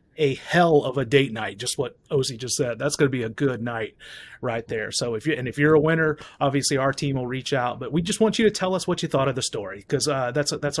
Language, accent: English, American